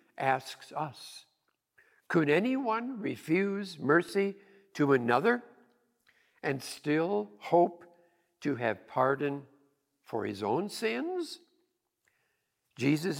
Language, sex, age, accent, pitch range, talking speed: English, male, 60-79, American, 120-175 Hz, 85 wpm